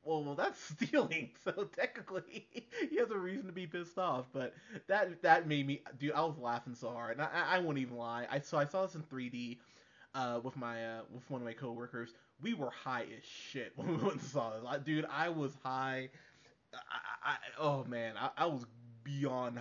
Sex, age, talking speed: male, 20-39, 215 wpm